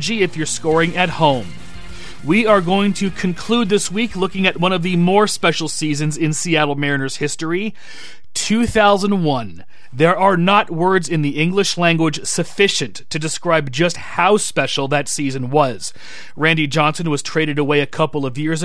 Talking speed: 165 wpm